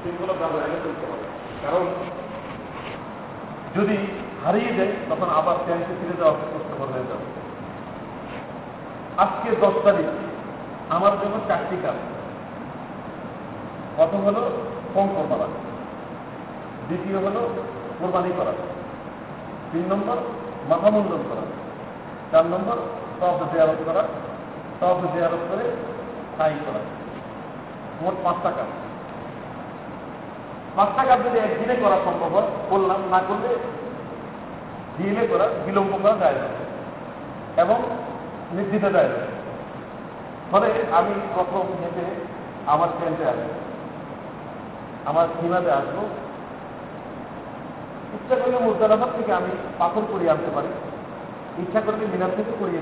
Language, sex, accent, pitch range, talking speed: Bengali, male, native, 170-220 Hz, 70 wpm